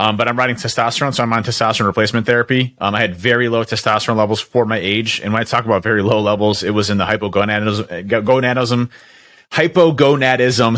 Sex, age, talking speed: male, 30-49, 200 wpm